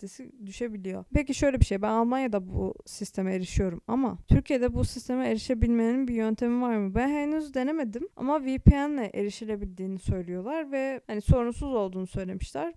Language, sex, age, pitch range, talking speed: Turkish, female, 20-39, 215-270 Hz, 145 wpm